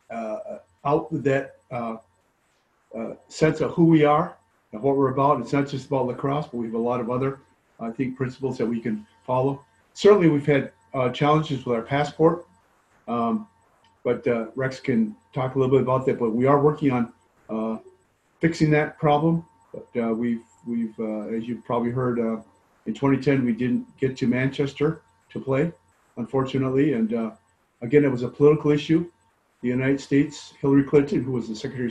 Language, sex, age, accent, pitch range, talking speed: English, male, 40-59, American, 120-140 Hz, 185 wpm